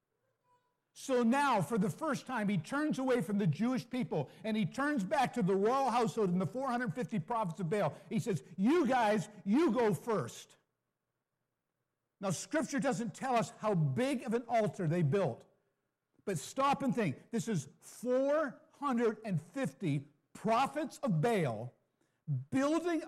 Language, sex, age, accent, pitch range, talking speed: English, male, 50-69, American, 180-255 Hz, 150 wpm